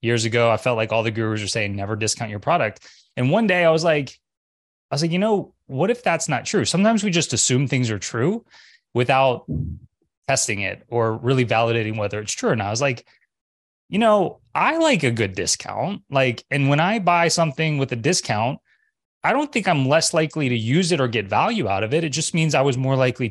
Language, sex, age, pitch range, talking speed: English, male, 20-39, 115-160 Hz, 225 wpm